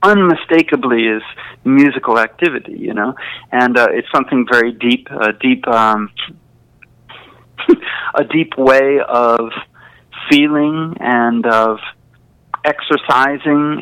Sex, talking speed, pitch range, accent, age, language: male, 105 wpm, 120-150 Hz, American, 50-69, English